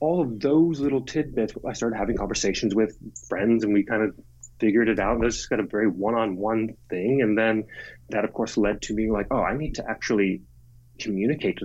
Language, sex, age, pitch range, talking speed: English, male, 30-49, 105-130 Hz, 220 wpm